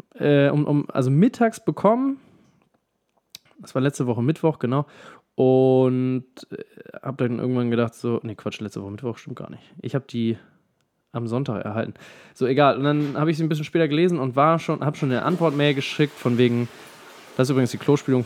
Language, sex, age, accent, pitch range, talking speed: German, male, 20-39, German, 115-150 Hz, 195 wpm